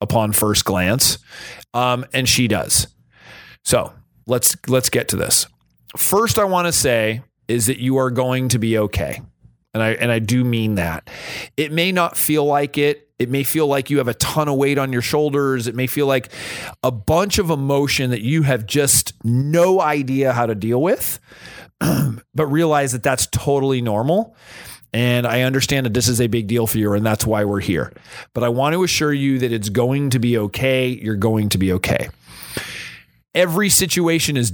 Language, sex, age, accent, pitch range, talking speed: English, male, 30-49, American, 115-145 Hz, 195 wpm